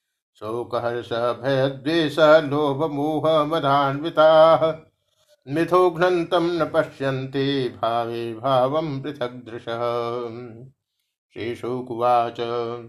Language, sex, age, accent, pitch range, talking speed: Hindi, male, 50-69, native, 125-155 Hz, 45 wpm